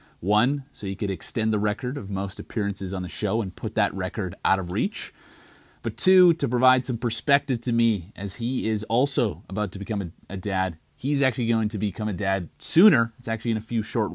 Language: English